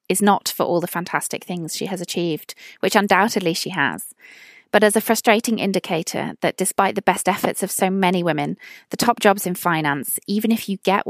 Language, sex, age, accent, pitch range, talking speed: English, female, 20-39, British, 170-210 Hz, 200 wpm